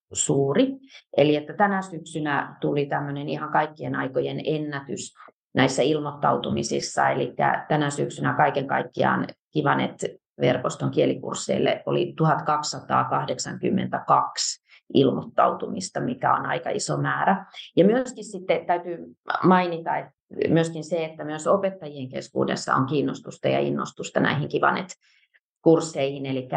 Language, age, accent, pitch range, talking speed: Finnish, 30-49, native, 150-200 Hz, 110 wpm